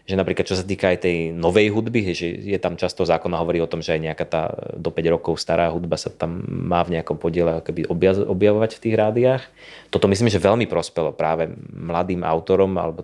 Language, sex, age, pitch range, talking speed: English, male, 30-49, 85-105 Hz, 205 wpm